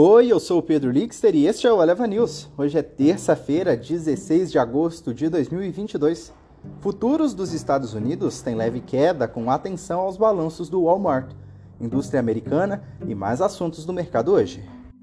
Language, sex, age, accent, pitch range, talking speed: Portuguese, male, 30-49, Brazilian, 130-185 Hz, 165 wpm